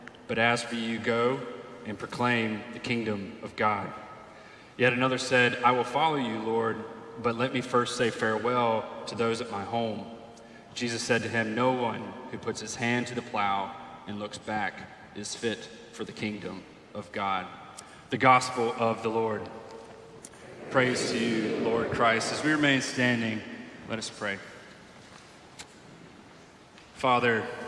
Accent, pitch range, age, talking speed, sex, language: American, 110-120 Hz, 30-49, 155 wpm, male, English